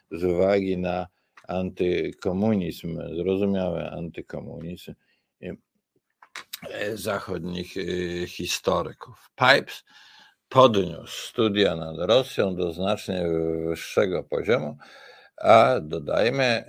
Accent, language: native, Polish